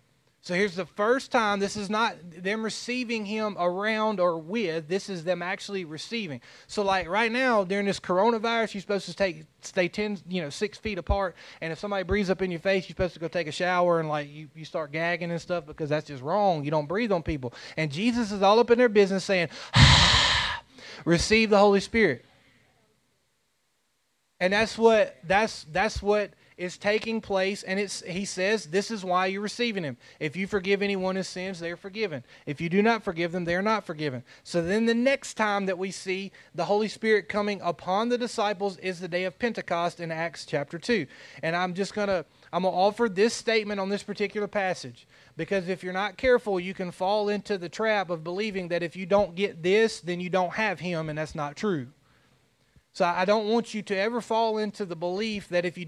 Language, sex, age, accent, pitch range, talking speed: English, male, 20-39, American, 175-215 Hz, 215 wpm